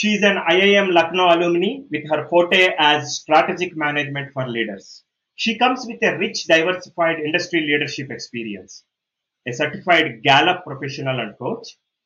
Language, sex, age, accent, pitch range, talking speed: English, male, 30-49, Indian, 140-190 Hz, 145 wpm